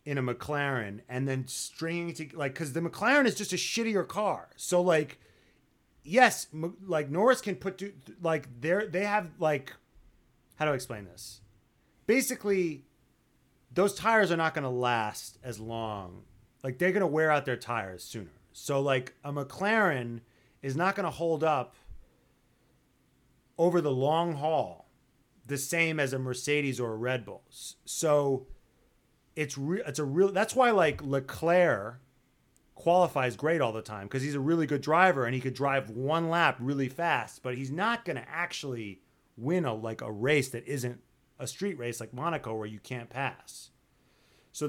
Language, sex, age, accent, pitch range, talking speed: English, male, 30-49, American, 125-175 Hz, 170 wpm